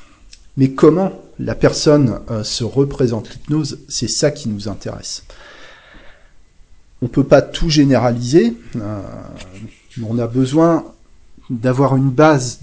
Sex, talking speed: male, 130 wpm